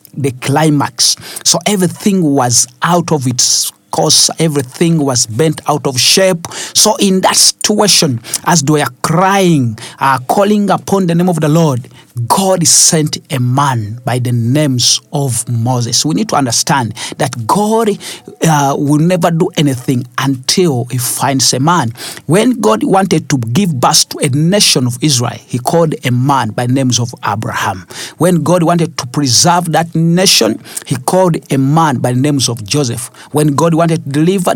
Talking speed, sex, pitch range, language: 170 wpm, male, 130-175 Hz, English